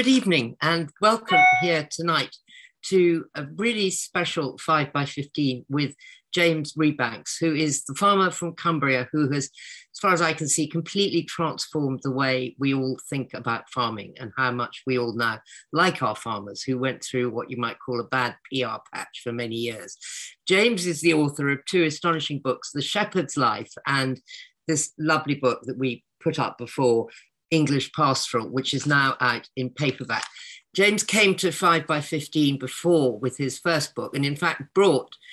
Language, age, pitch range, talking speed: English, 50-69, 125-165 Hz, 180 wpm